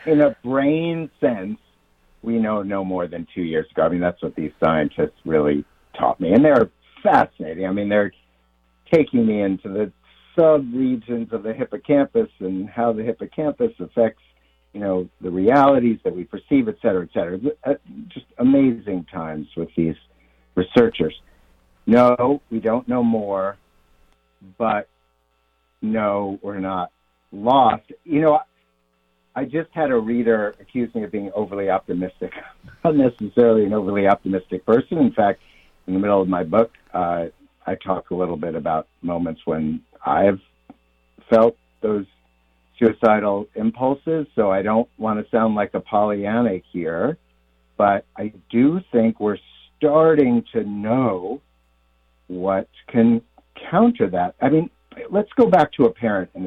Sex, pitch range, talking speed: male, 80-120 Hz, 150 wpm